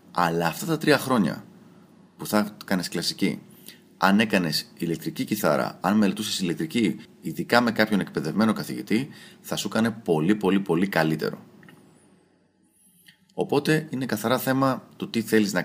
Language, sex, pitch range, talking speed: Greek, male, 95-140 Hz, 140 wpm